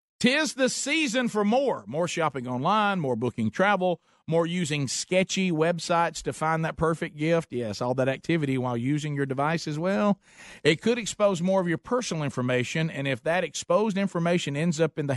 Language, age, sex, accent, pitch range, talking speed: English, 50-69, male, American, 130-185 Hz, 185 wpm